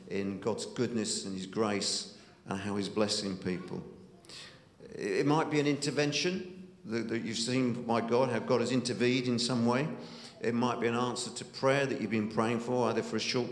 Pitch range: 105-130 Hz